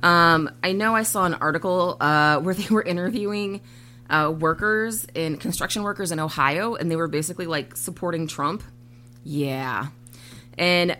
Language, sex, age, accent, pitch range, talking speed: English, female, 20-39, American, 145-225 Hz, 155 wpm